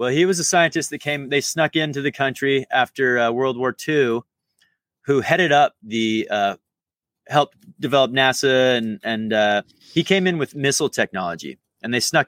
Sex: male